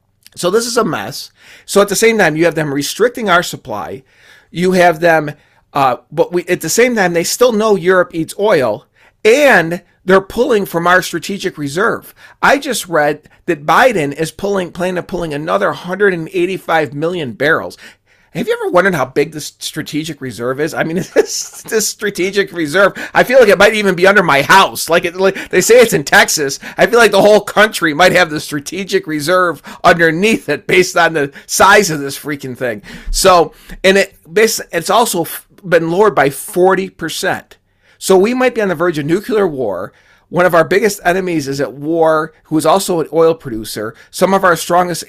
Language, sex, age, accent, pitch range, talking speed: English, male, 40-59, American, 155-200 Hz, 195 wpm